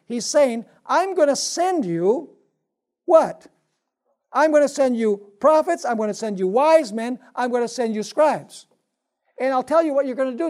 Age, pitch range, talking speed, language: 60-79, 195-275 Hz, 205 wpm, English